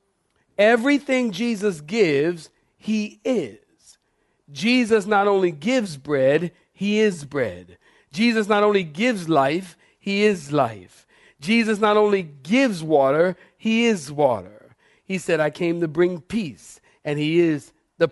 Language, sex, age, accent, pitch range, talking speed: English, male, 50-69, American, 145-195 Hz, 135 wpm